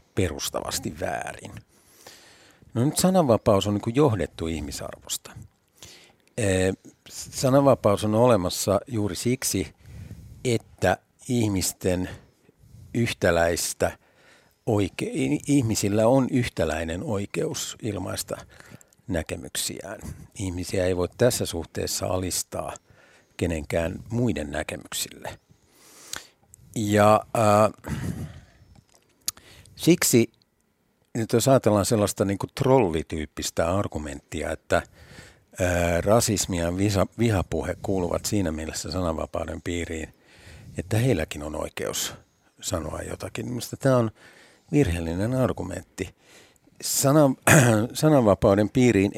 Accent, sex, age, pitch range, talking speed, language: native, male, 60-79, 90-120 Hz, 80 wpm, Finnish